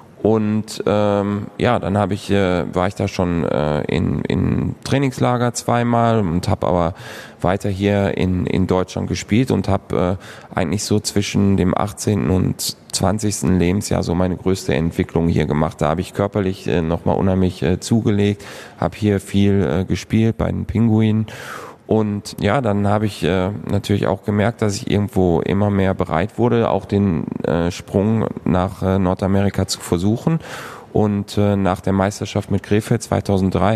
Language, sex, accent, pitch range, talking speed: German, male, German, 95-110 Hz, 155 wpm